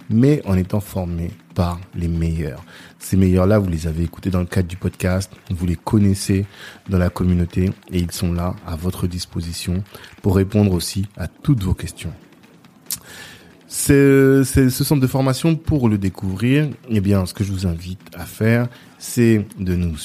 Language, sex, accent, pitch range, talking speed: French, male, French, 90-105 Hz, 175 wpm